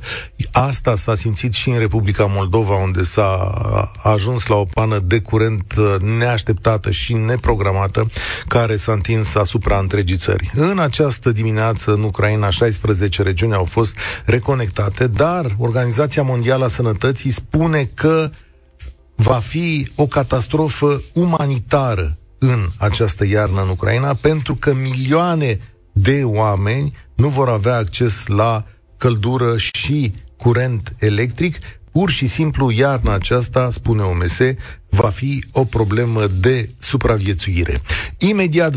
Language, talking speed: Romanian, 120 wpm